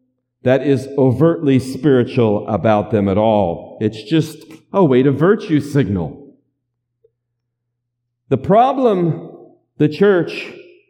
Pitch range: 125-175 Hz